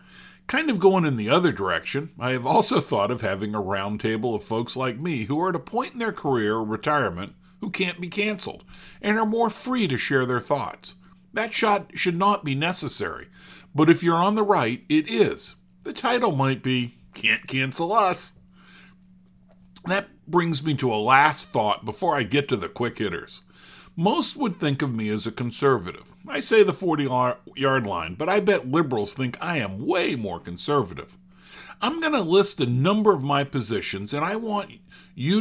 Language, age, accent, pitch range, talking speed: English, 50-69, American, 125-195 Hz, 190 wpm